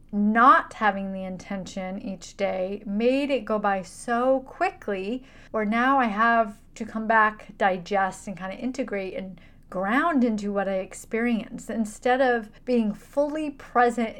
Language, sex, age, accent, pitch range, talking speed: English, female, 30-49, American, 205-255 Hz, 150 wpm